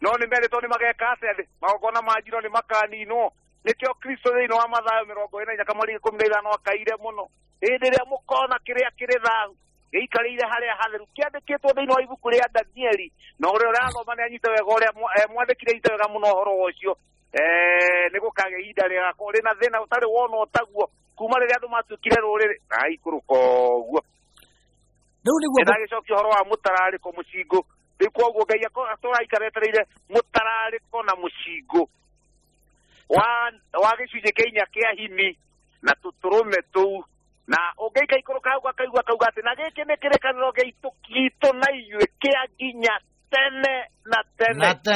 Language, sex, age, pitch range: English, male, 50-69, 205-250 Hz